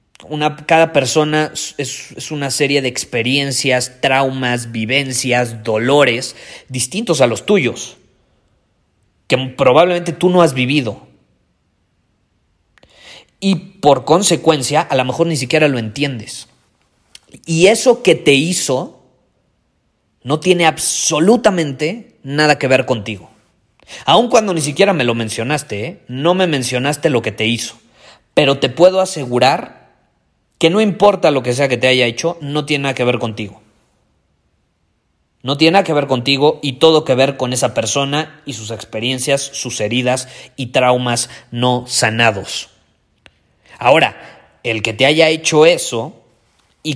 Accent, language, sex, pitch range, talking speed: Mexican, Spanish, male, 115-150 Hz, 135 wpm